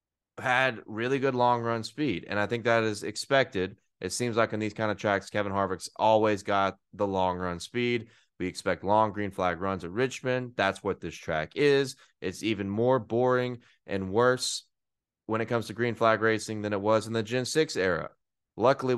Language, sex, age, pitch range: English, male, 20-39, 100-130 Hz